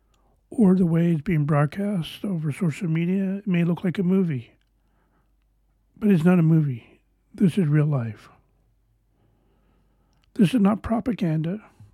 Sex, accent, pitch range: male, American, 140-195 Hz